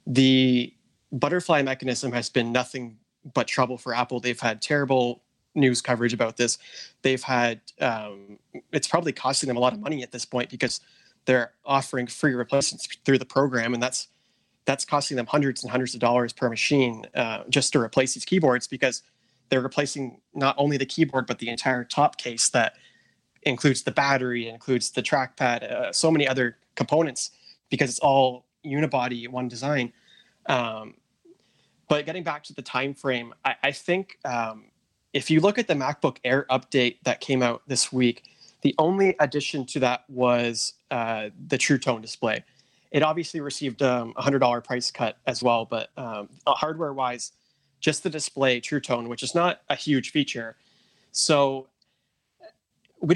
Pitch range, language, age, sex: 120-145 Hz, English, 20-39, male